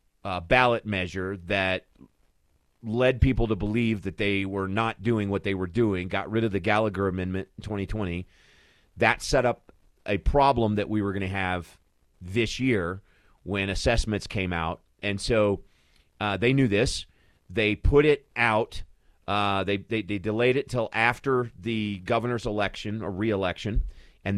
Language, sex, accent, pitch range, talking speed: English, male, American, 95-120 Hz, 160 wpm